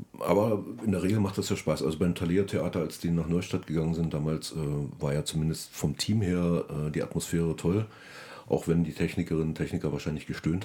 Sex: male